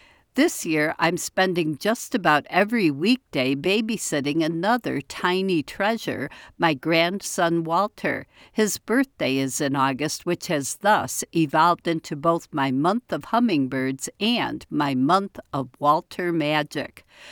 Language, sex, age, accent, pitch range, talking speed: English, female, 60-79, American, 150-205 Hz, 125 wpm